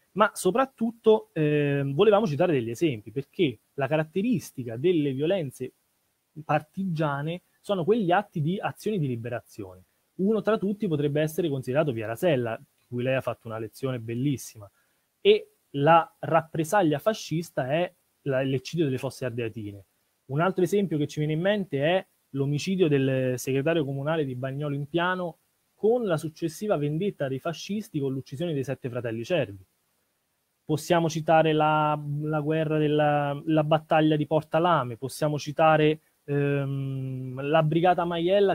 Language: Italian